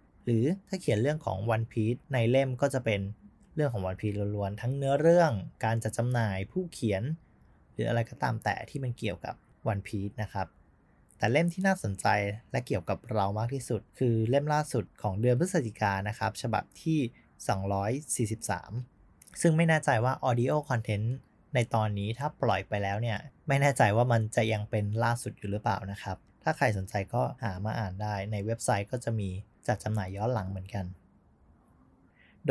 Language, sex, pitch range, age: Thai, male, 100-130 Hz, 20-39